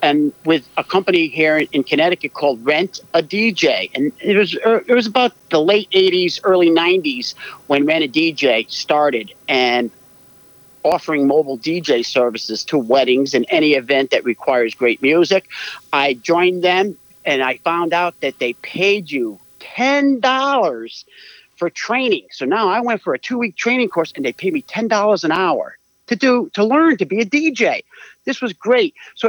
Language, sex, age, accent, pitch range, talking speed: English, male, 50-69, American, 140-205 Hz, 170 wpm